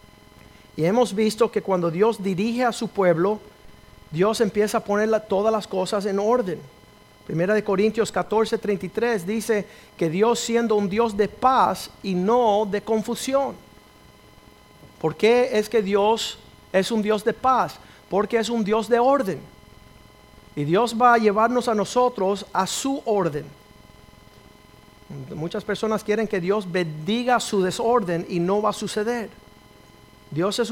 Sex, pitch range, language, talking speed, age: male, 180-225 Hz, Spanish, 150 wpm, 50-69